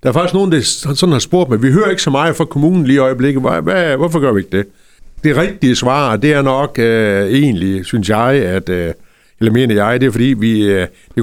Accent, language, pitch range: native, Danish, 95-135 Hz